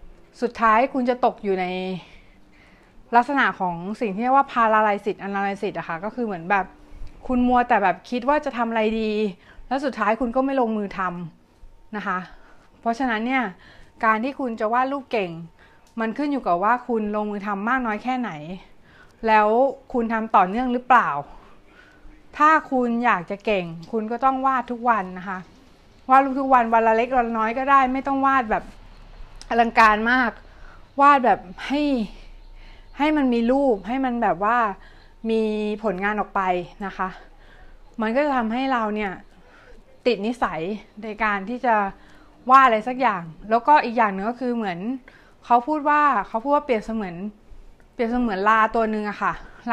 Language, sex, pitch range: Thai, female, 205-255 Hz